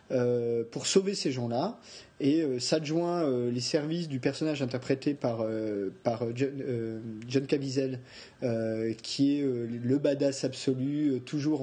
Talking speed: 155 wpm